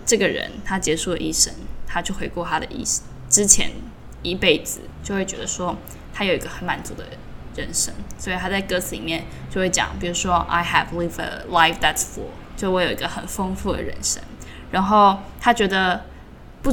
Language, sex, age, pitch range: Chinese, female, 10-29, 175-235 Hz